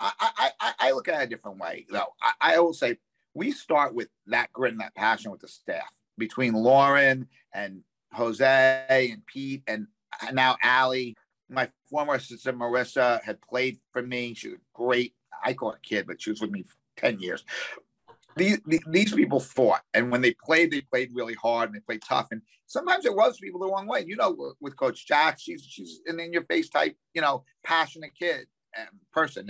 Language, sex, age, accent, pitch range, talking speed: English, male, 50-69, American, 120-160 Hz, 195 wpm